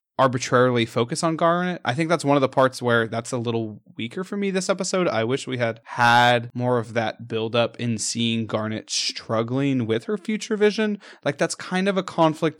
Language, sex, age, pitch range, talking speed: English, male, 20-39, 115-140 Hz, 210 wpm